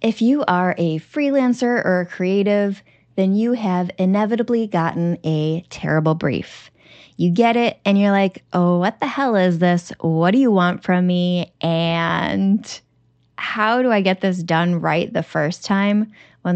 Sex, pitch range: female, 175-215 Hz